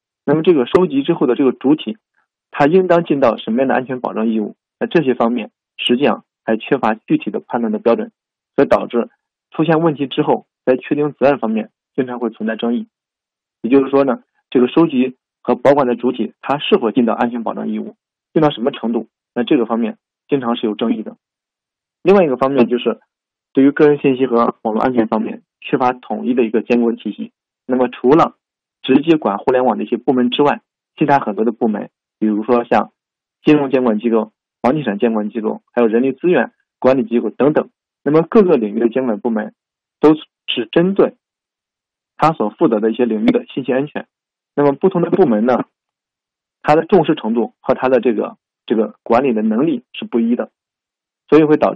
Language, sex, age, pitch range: Chinese, male, 20-39, 115-150 Hz